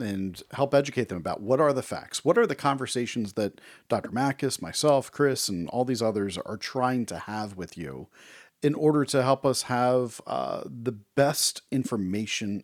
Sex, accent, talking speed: male, American, 180 wpm